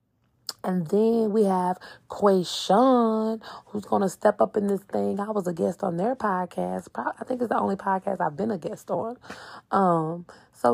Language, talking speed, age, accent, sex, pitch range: English, 185 wpm, 20-39, American, female, 195-270 Hz